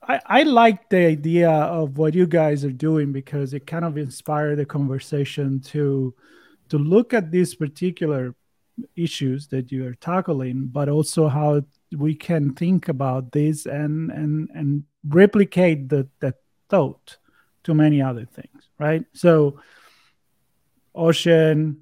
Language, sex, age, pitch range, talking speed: English, male, 40-59, 135-165 Hz, 140 wpm